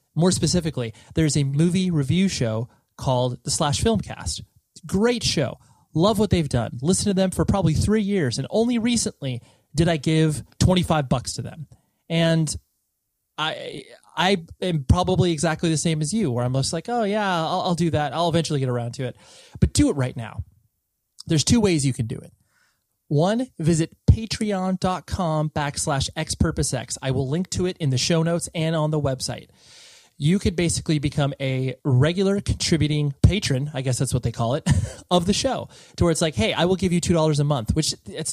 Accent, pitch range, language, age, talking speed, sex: American, 125-170 Hz, English, 30-49, 190 wpm, male